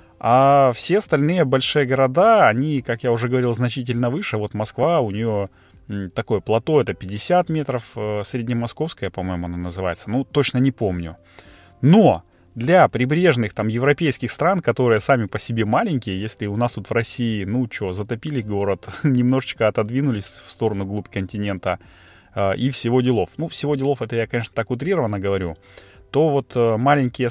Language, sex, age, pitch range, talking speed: Russian, male, 30-49, 100-125 Hz, 155 wpm